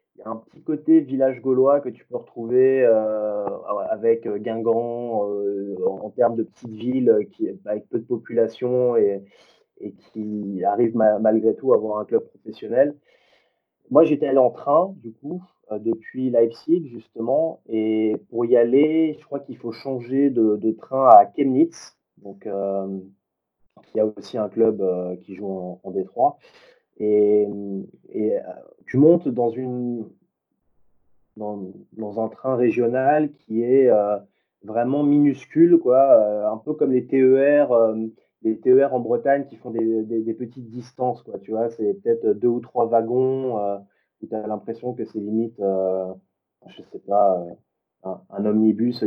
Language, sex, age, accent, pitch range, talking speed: French, male, 30-49, French, 105-130 Hz, 170 wpm